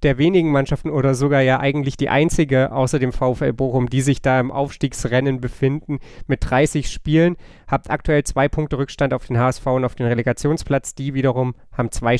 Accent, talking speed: German, 185 wpm